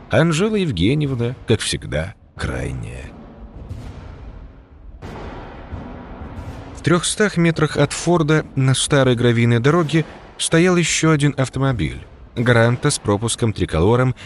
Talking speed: 90 wpm